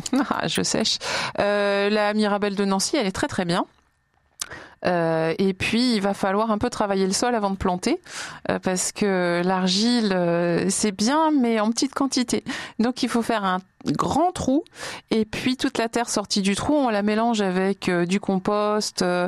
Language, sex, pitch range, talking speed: French, female, 190-230 Hz, 185 wpm